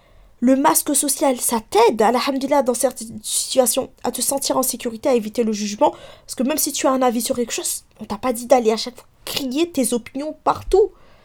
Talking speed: 225 wpm